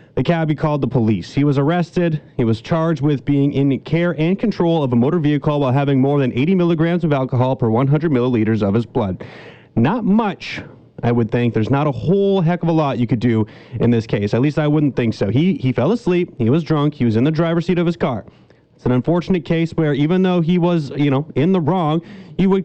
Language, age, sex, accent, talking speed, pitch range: English, 30-49, male, American, 245 wpm, 130-165 Hz